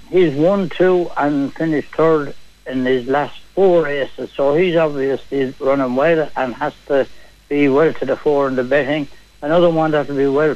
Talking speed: 190 wpm